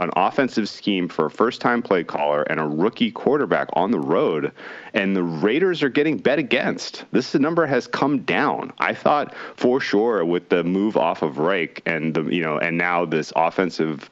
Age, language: 30-49, English